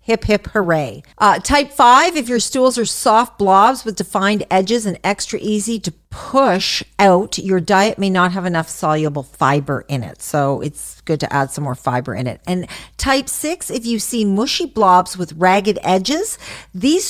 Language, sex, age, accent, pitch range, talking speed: English, female, 50-69, American, 165-220 Hz, 185 wpm